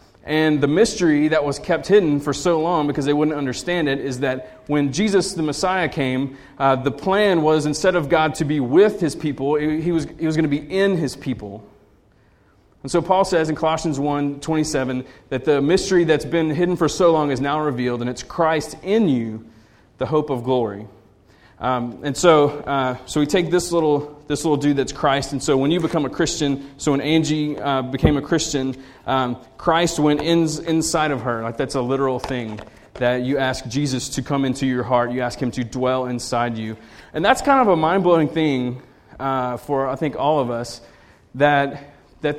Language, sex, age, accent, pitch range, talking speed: English, male, 30-49, American, 130-160 Hz, 205 wpm